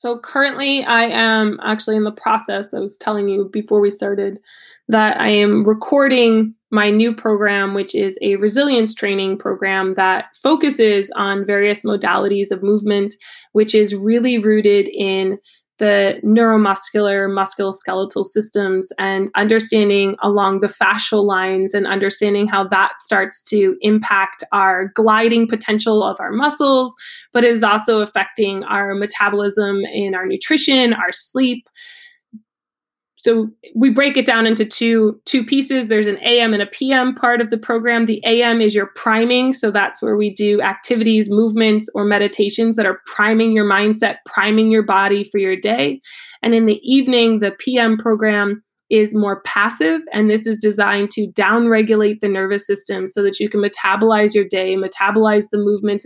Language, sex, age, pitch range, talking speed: English, female, 20-39, 200-230 Hz, 160 wpm